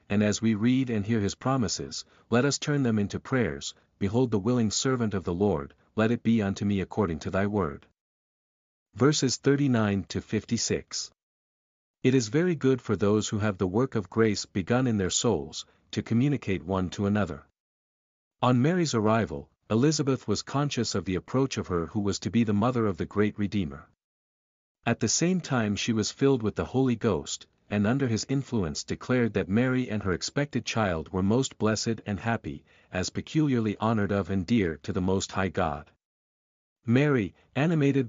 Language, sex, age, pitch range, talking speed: English, male, 50-69, 95-120 Hz, 180 wpm